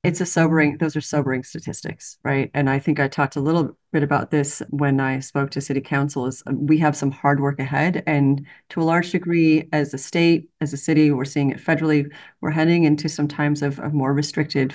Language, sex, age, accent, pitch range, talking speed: English, female, 30-49, American, 140-155 Hz, 225 wpm